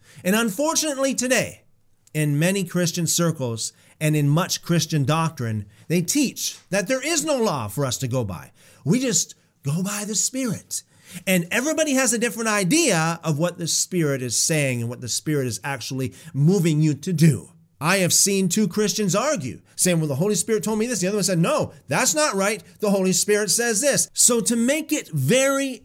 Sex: male